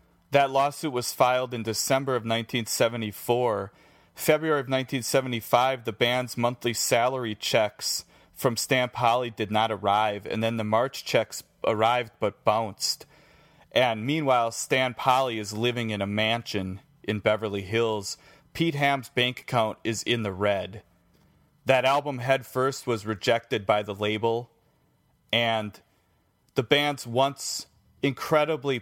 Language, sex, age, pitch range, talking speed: English, male, 30-49, 110-130 Hz, 135 wpm